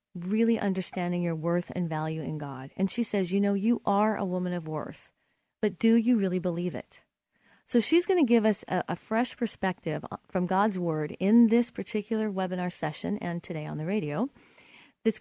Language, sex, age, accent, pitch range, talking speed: English, female, 40-59, American, 175-220 Hz, 195 wpm